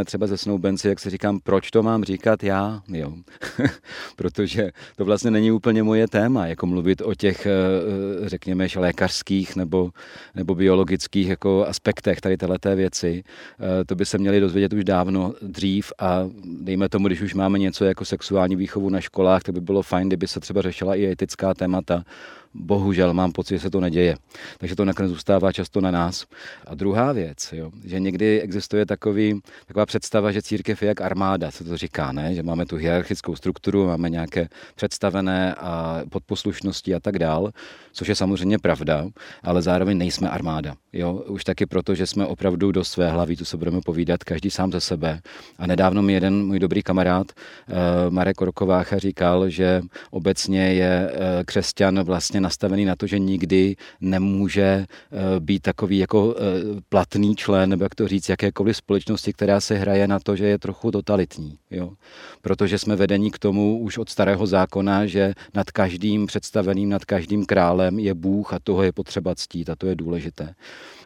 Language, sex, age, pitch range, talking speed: Czech, male, 40-59, 90-100 Hz, 175 wpm